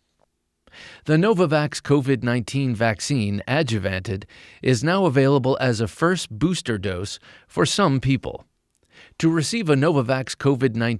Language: English